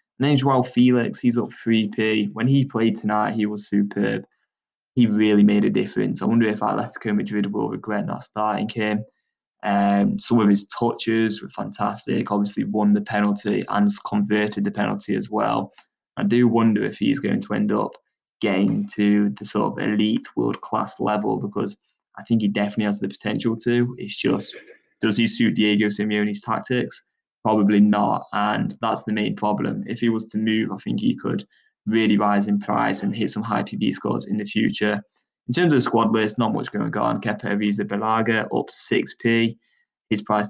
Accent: British